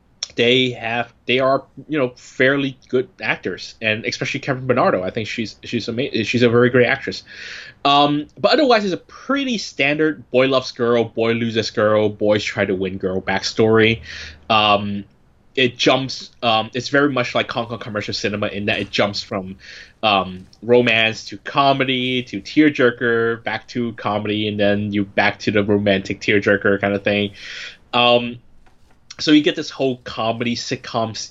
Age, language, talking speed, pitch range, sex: 20-39, English, 165 wpm, 105-130 Hz, male